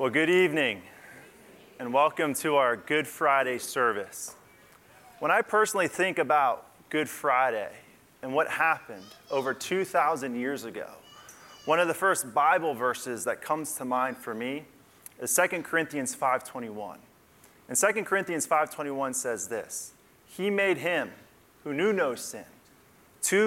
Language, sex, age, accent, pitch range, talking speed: English, male, 30-49, American, 145-195 Hz, 140 wpm